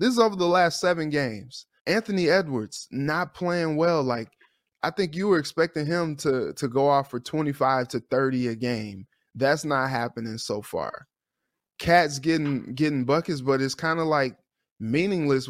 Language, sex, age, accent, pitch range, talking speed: English, male, 20-39, American, 125-155 Hz, 175 wpm